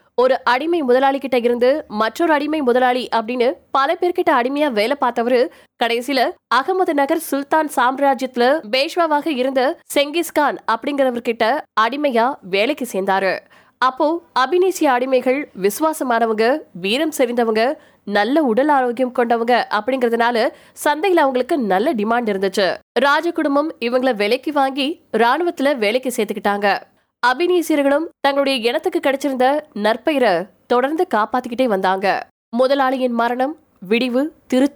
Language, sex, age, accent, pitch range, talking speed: Tamil, female, 20-39, native, 230-295 Hz, 75 wpm